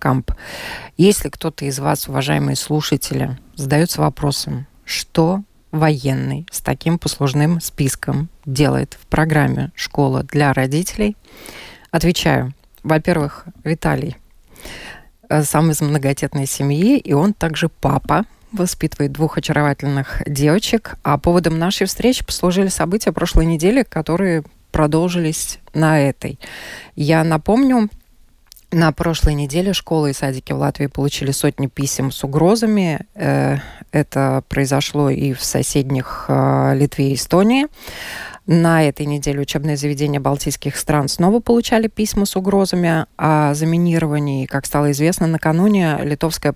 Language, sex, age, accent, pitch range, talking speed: Russian, female, 20-39, native, 140-170 Hz, 115 wpm